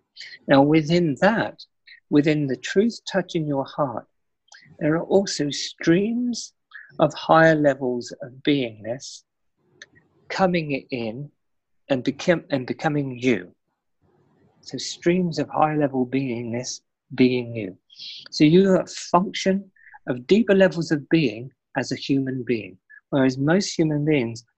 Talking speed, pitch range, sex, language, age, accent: 120 wpm, 130-170 Hz, male, English, 50-69, British